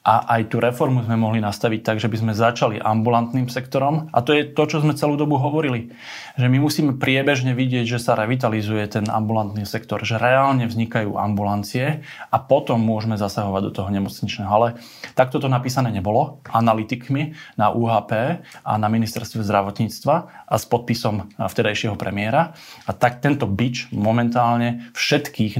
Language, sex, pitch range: Slovak, male, 110-130 Hz